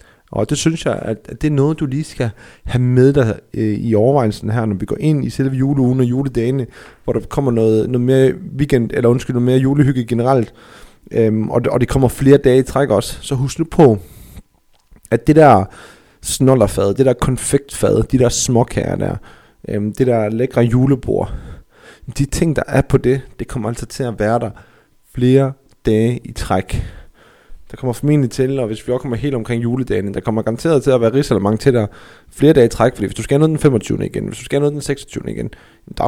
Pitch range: 110-135 Hz